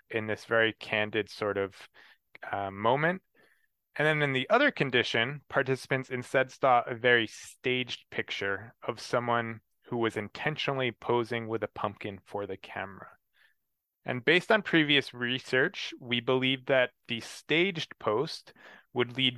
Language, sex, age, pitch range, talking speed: English, male, 20-39, 110-140 Hz, 140 wpm